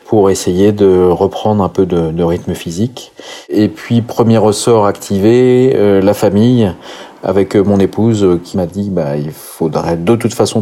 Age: 30-49